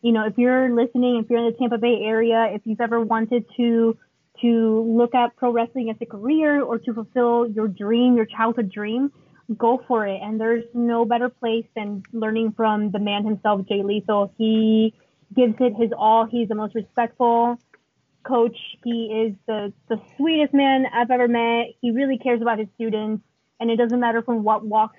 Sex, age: female, 20-39